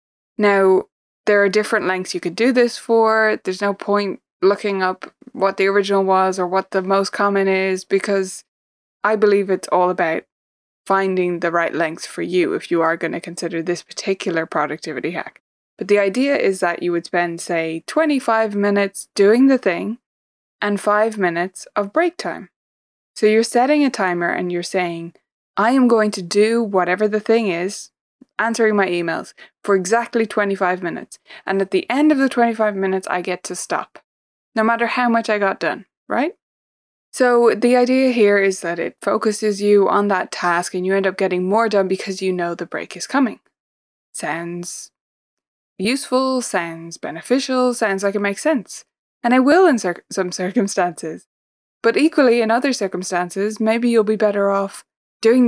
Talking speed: 175 wpm